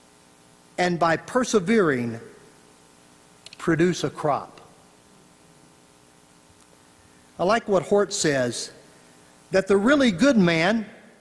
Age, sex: 50-69, male